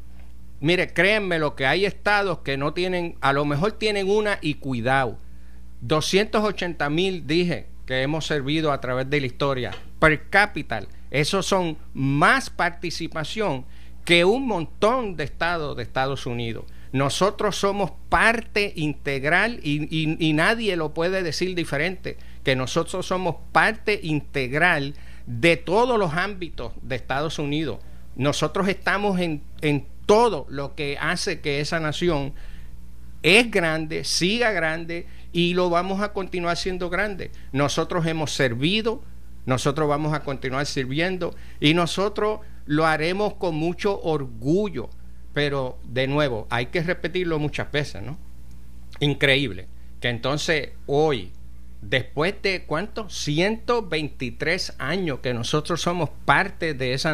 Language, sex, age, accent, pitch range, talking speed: Spanish, male, 50-69, American, 130-180 Hz, 130 wpm